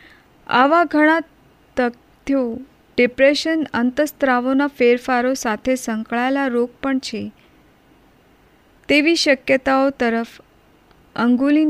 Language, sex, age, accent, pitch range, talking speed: Hindi, female, 30-49, native, 235-275 Hz, 50 wpm